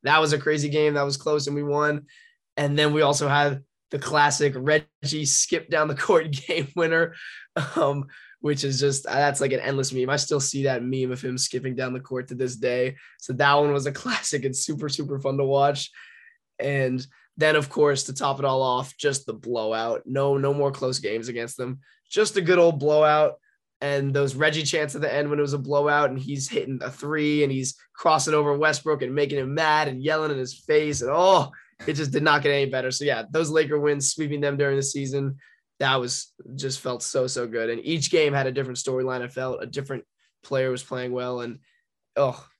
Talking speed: 225 wpm